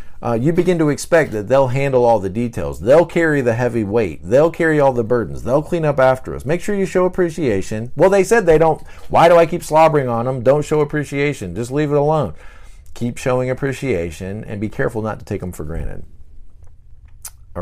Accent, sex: American, male